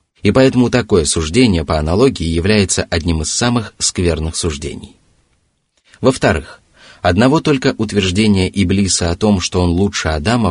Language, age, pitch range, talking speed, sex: Russian, 30-49, 85-110 Hz, 130 wpm, male